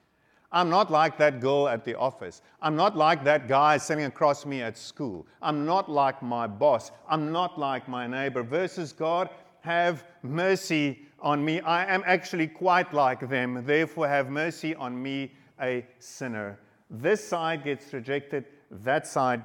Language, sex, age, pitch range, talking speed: English, male, 50-69, 130-170 Hz, 165 wpm